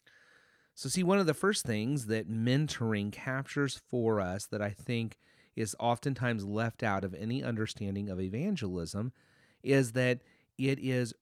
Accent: American